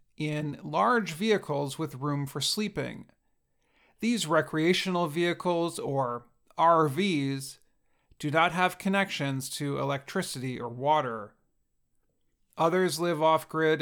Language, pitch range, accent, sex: English, 140-185 Hz, American, male